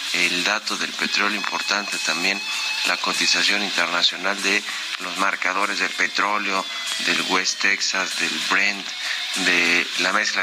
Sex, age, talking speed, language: male, 40-59, 125 wpm, Spanish